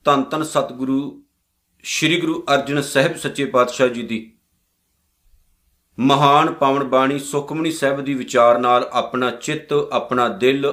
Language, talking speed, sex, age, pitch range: Punjabi, 135 wpm, male, 50-69, 125-165 Hz